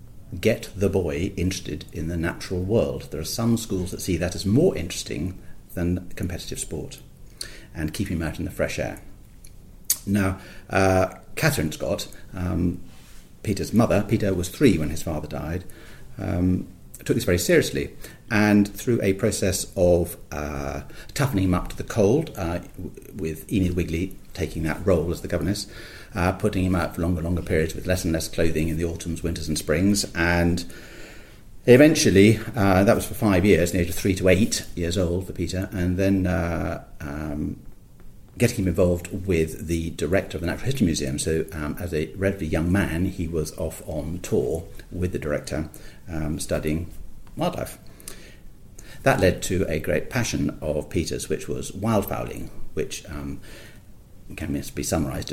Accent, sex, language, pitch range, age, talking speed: British, male, English, 85-100 Hz, 40-59, 170 wpm